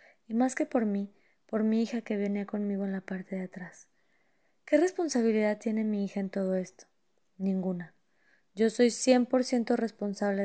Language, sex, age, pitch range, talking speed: Spanish, female, 20-39, 195-225 Hz, 165 wpm